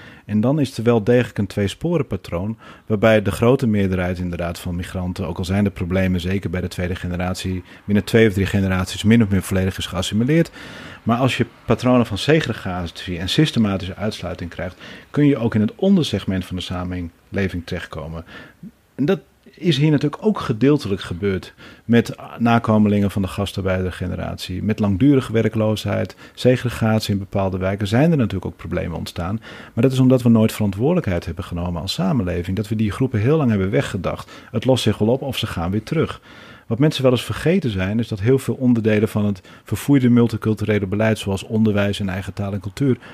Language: Dutch